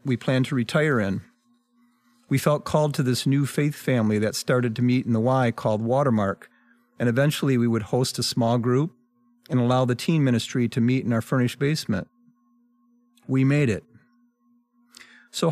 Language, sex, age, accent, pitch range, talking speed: English, male, 40-59, American, 120-160 Hz, 175 wpm